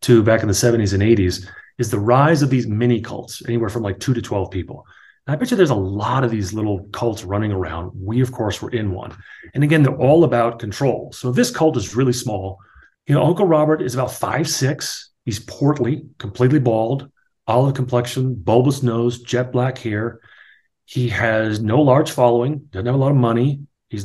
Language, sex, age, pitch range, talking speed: English, male, 30-49, 115-145 Hz, 205 wpm